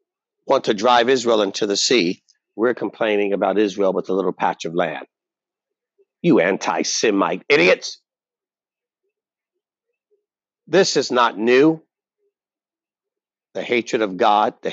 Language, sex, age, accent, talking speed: English, male, 50-69, American, 120 wpm